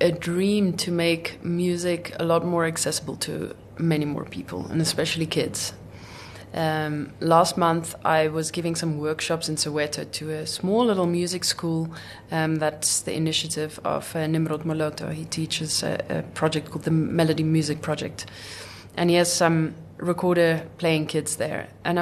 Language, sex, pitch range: English, female, 150-185 Hz